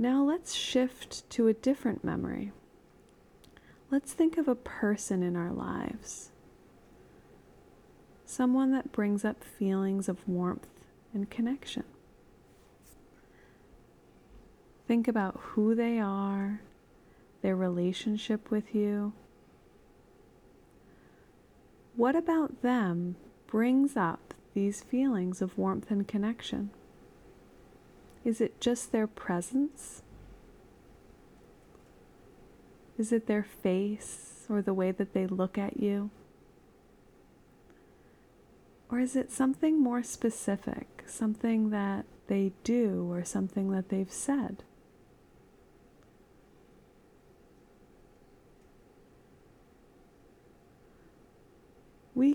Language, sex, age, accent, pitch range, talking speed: English, female, 30-49, American, 195-245 Hz, 90 wpm